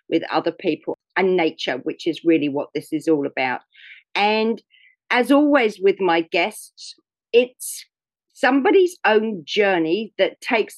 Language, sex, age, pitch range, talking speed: English, female, 50-69, 165-240 Hz, 140 wpm